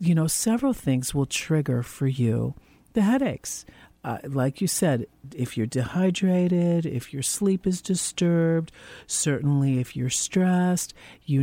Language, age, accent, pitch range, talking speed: English, 50-69, American, 130-160 Hz, 140 wpm